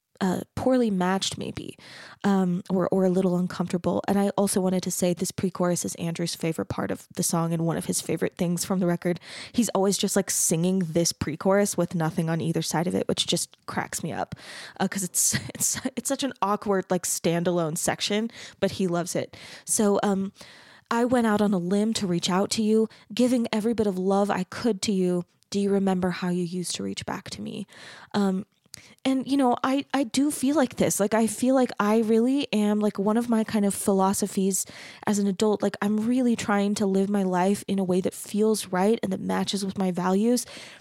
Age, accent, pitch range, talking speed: 20-39, American, 185-215 Hz, 220 wpm